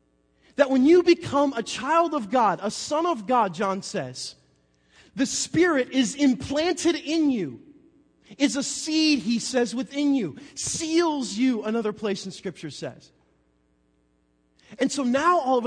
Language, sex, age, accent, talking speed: English, male, 30-49, American, 150 wpm